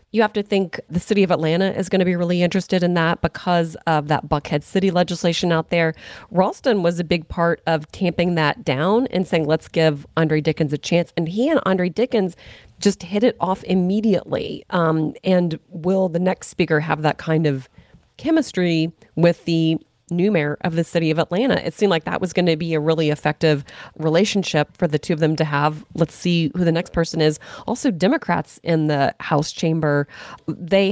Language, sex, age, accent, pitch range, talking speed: English, female, 30-49, American, 155-185 Hz, 200 wpm